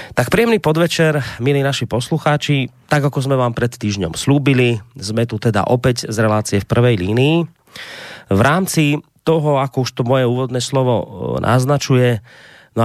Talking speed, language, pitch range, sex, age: 155 wpm, Slovak, 105-130 Hz, male, 30-49